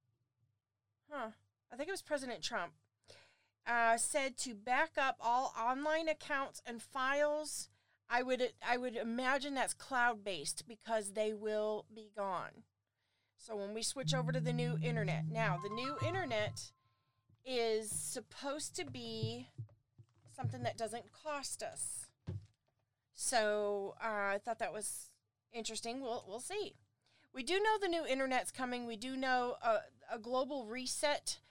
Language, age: English, 40-59